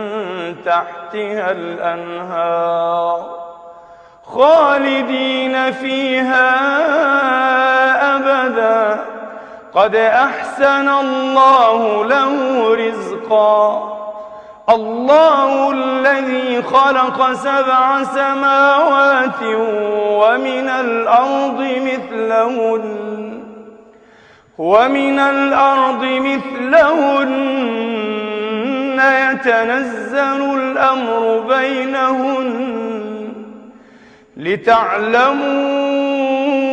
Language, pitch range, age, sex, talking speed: Arabic, 185-265 Hz, 40-59, male, 40 wpm